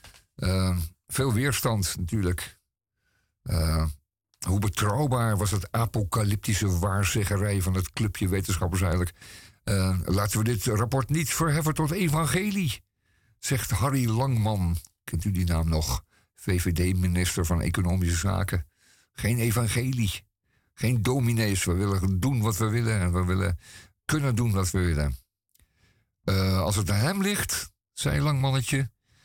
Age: 50-69